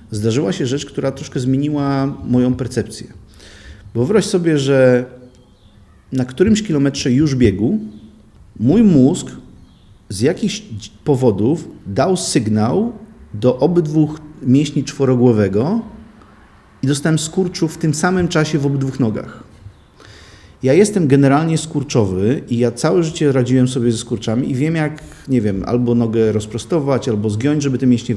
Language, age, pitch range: Polish, 40-59, 115-145 Hz